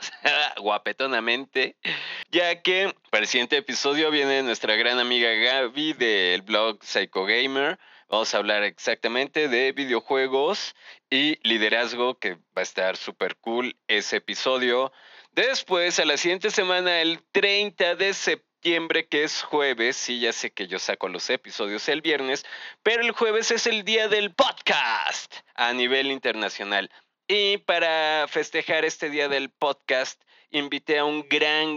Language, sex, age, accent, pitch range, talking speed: Spanish, male, 30-49, Mexican, 125-180 Hz, 145 wpm